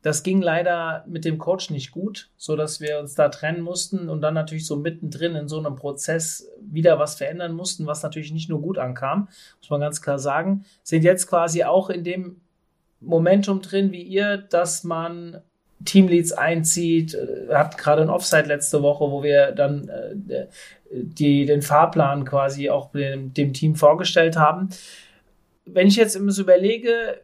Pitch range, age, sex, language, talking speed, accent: 150-185 Hz, 30-49, male, German, 175 wpm, German